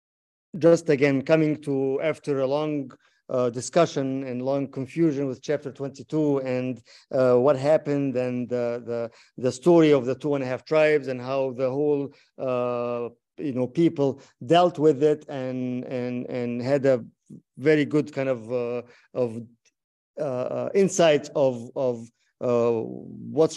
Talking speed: 150 wpm